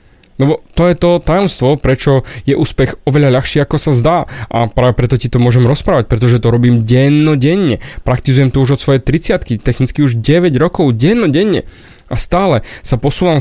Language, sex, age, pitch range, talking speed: Slovak, male, 20-39, 120-160 Hz, 180 wpm